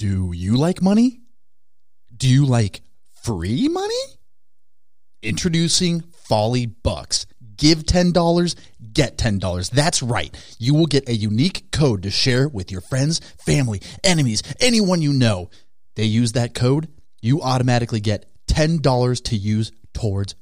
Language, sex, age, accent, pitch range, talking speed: English, male, 30-49, American, 105-150 Hz, 130 wpm